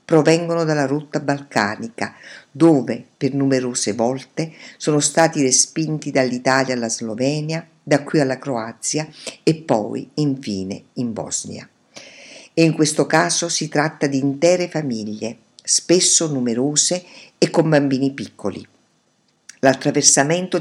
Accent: native